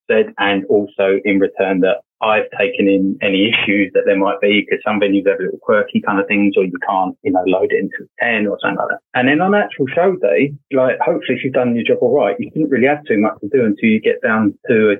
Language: English